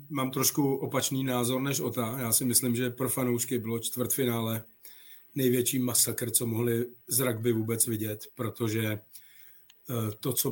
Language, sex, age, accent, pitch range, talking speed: Czech, male, 40-59, native, 120-130 Hz, 145 wpm